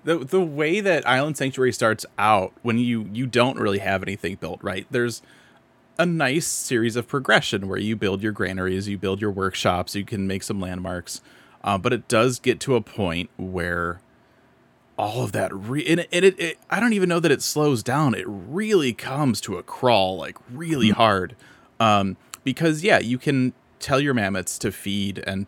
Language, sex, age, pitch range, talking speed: English, male, 30-49, 100-130 Hz, 195 wpm